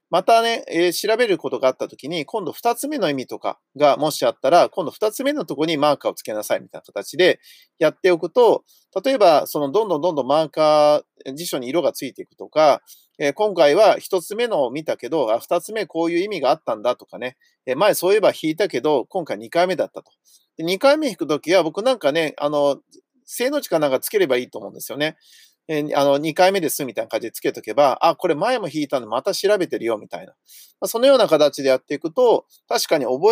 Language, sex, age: Japanese, male, 40-59